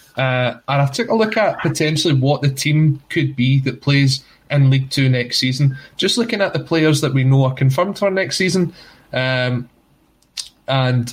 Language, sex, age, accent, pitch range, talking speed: English, male, 20-39, British, 130-155 Hz, 190 wpm